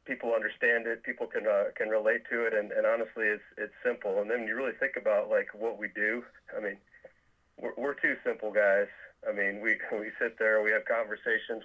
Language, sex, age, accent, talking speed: English, male, 40-59, American, 215 wpm